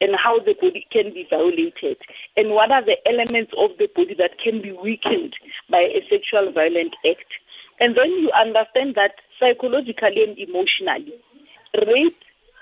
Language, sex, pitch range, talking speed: English, female, 215-335 Hz, 155 wpm